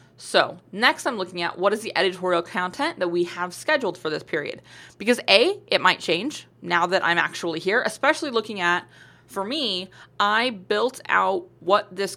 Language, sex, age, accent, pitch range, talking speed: English, female, 20-39, American, 175-235 Hz, 180 wpm